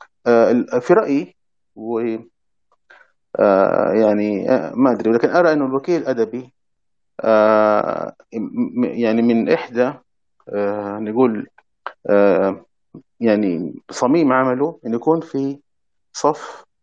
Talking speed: 90 wpm